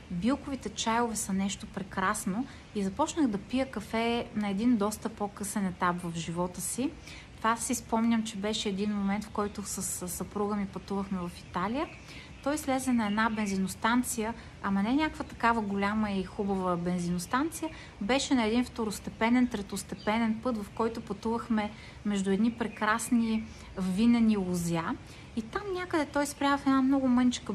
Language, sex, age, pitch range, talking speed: Bulgarian, female, 30-49, 195-240 Hz, 150 wpm